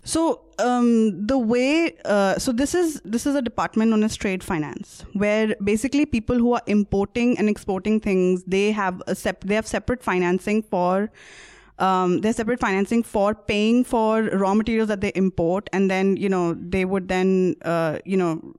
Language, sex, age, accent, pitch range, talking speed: English, female, 20-39, Indian, 185-230 Hz, 180 wpm